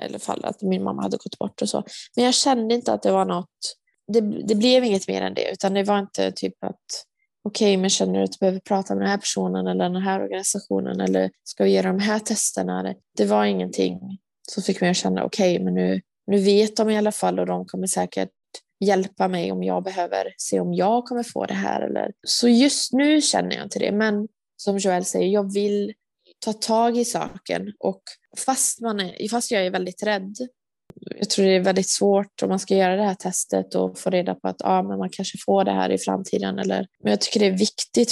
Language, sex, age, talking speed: Swedish, female, 20-39, 225 wpm